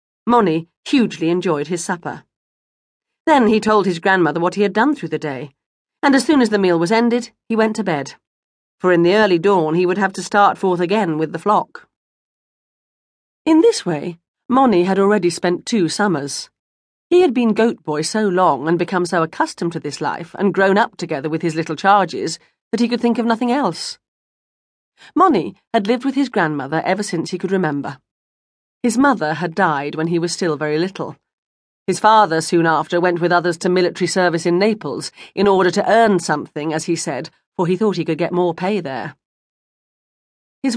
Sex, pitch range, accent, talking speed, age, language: female, 160-210 Hz, British, 195 wpm, 40-59, English